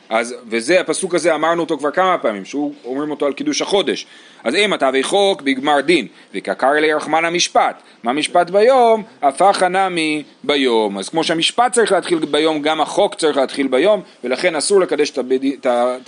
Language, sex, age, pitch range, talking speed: Hebrew, male, 40-59, 150-225 Hz, 195 wpm